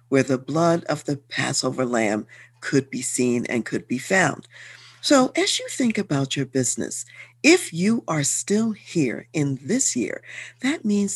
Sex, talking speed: female, 165 wpm